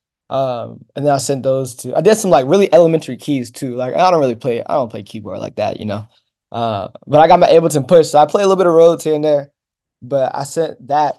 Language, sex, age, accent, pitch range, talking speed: English, male, 20-39, American, 120-150 Hz, 270 wpm